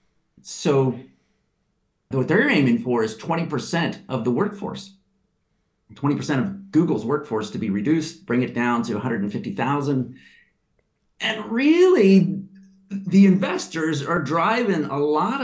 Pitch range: 125-190 Hz